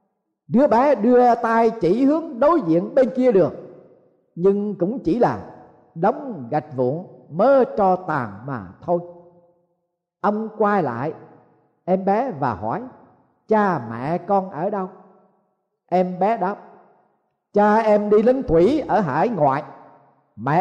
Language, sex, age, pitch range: Vietnamese, male, 50-69, 165-235 Hz